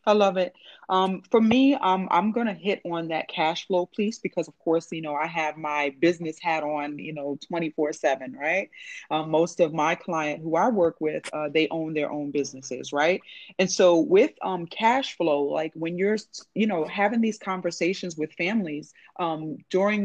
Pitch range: 155-190 Hz